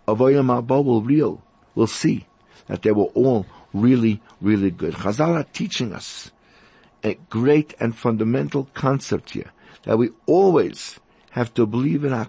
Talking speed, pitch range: 145 wpm, 110-140 Hz